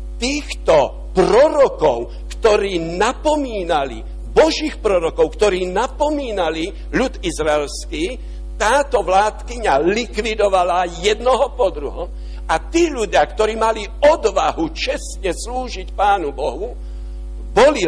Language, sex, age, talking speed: Slovak, male, 60-79, 90 wpm